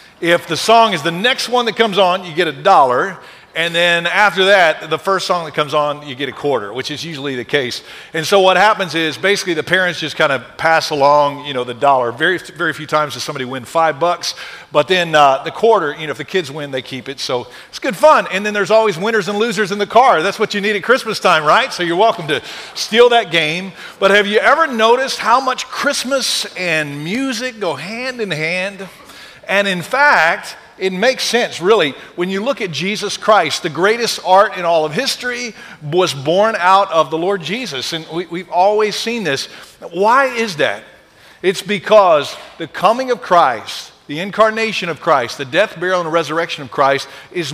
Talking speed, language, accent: 215 wpm, English, American